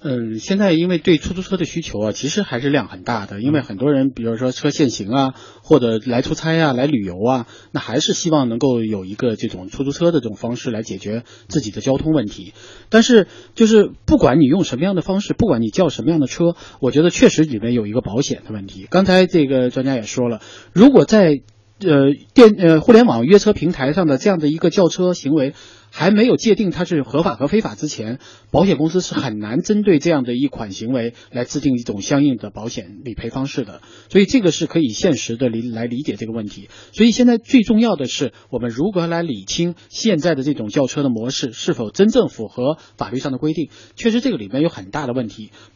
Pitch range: 120-170 Hz